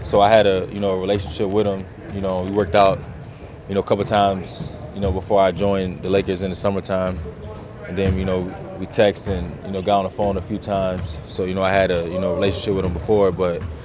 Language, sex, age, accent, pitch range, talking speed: English, male, 20-39, American, 90-100 Hz, 245 wpm